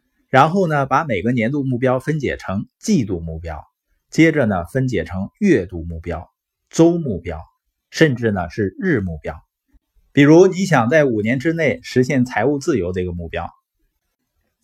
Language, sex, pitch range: Chinese, male, 110-155 Hz